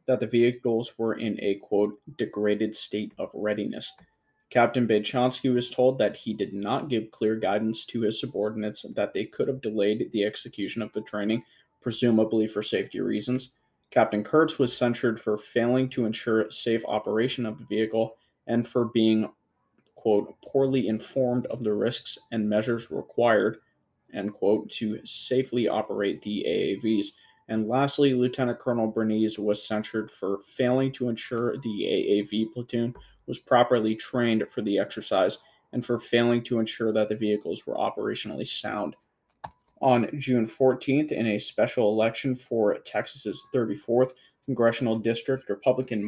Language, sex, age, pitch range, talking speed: English, male, 20-39, 105-125 Hz, 150 wpm